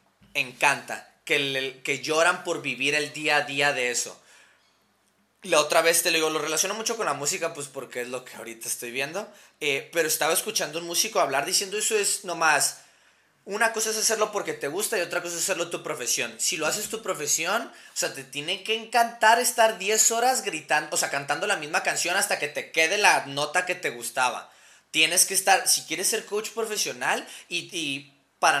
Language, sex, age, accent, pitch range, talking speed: Spanish, male, 20-39, Mexican, 145-200 Hz, 205 wpm